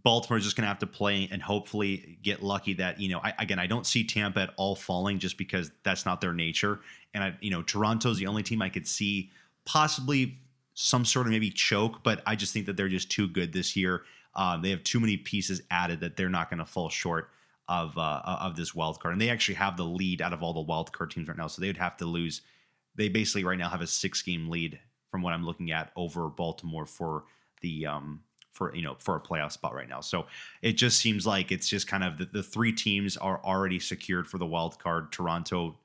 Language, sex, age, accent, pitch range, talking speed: English, male, 30-49, American, 85-105 Hz, 250 wpm